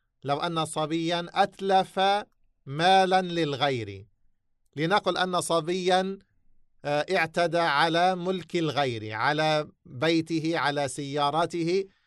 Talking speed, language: 85 wpm, English